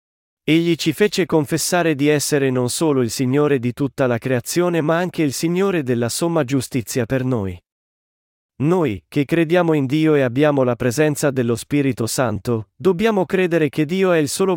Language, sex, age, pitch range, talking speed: Italian, male, 40-59, 125-160 Hz, 175 wpm